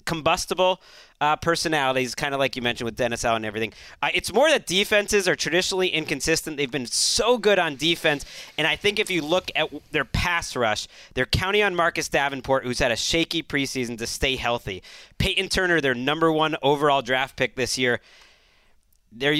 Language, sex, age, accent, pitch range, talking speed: English, male, 30-49, American, 135-190 Hz, 190 wpm